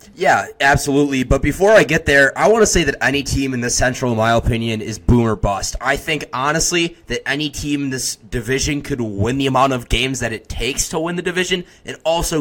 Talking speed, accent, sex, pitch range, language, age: 230 wpm, American, male, 110-140 Hz, English, 20-39